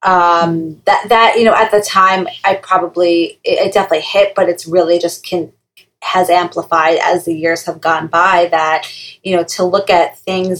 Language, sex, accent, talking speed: English, female, American, 195 wpm